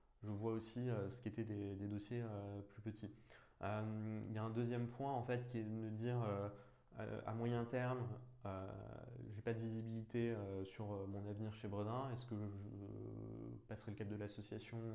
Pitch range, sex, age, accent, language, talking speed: 100-115 Hz, male, 20-39, French, French, 210 wpm